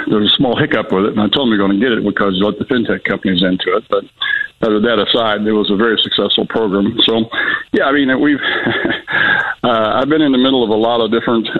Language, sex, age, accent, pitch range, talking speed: English, male, 60-79, American, 105-115 Hz, 265 wpm